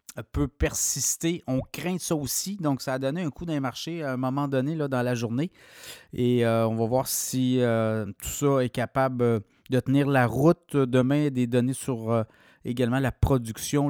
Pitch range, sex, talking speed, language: 120-150 Hz, male, 195 wpm, French